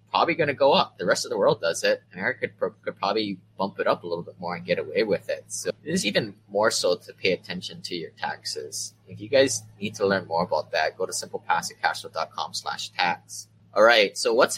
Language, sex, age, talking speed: English, male, 20-39, 245 wpm